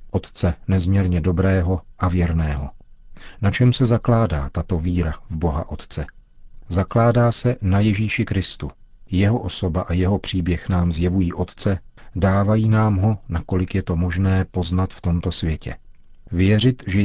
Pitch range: 85-100 Hz